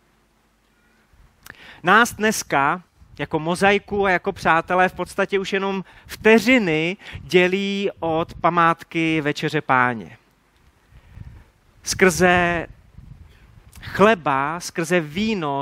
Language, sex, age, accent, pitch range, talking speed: Czech, male, 30-49, native, 150-195 Hz, 80 wpm